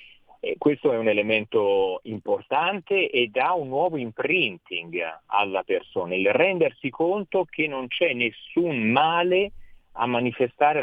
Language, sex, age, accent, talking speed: Italian, male, 40-59, native, 125 wpm